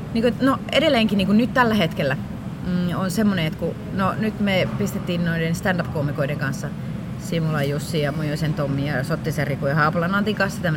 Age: 30-49